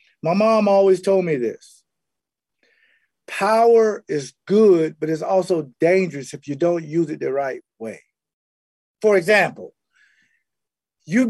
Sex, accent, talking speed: male, American, 125 wpm